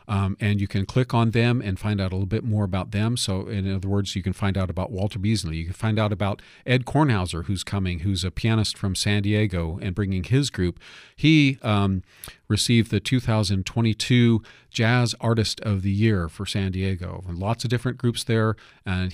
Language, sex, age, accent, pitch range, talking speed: English, male, 50-69, American, 95-115 Hz, 205 wpm